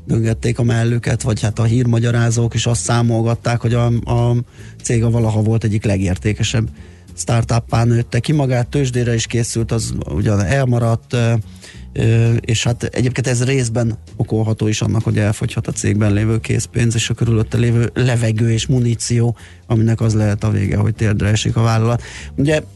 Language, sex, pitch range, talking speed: Hungarian, male, 110-120 Hz, 155 wpm